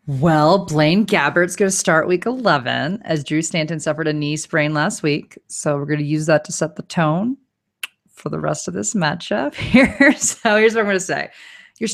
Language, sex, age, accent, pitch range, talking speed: English, female, 30-49, American, 130-195 Hz, 210 wpm